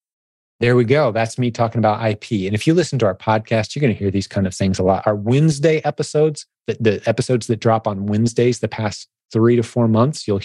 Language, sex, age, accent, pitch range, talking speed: English, male, 30-49, American, 100-120 Hz, 240 wpm